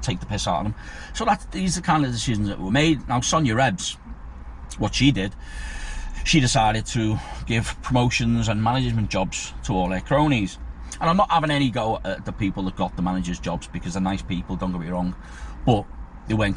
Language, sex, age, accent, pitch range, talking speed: English, male, 40-59, British, 85-120 Hz, 215 wpm